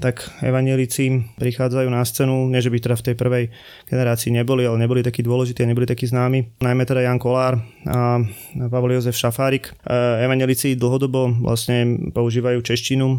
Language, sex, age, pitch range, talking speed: Slovak, male, 20-39, 115-130 Hz, 155 wpm